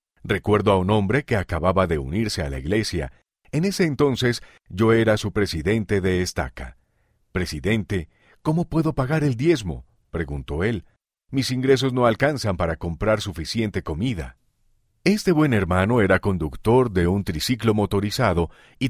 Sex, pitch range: male, 90-125 Hz